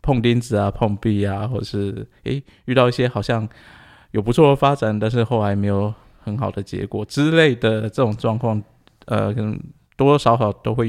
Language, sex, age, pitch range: Chinese, male, 20-39, 105-120 Hz